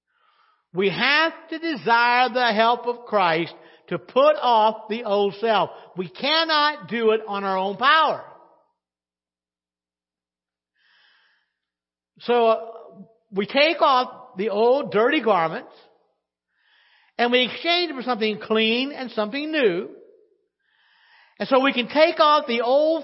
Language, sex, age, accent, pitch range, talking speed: English, male, 50-69, American, 180-285 Hz, 130 wpm